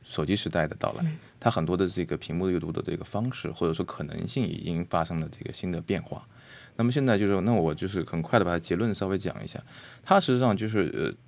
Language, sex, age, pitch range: Chinese, male, 20-39, 85-115 Hz